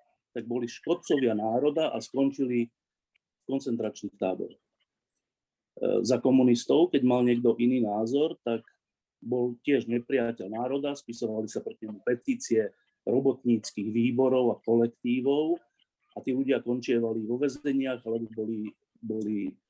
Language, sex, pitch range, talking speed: Slovak, male, 120-155 Hz, 120 wpm